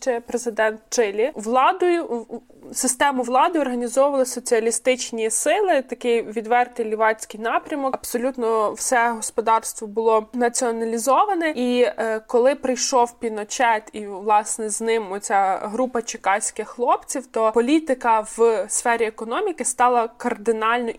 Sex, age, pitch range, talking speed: female, 20-39, 225-260 Hz, 105 wpm